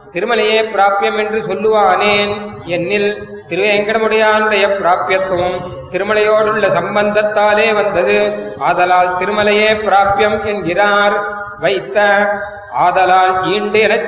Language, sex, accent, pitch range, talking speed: Tamil, male, native, 190-215 Hz, 75 wpm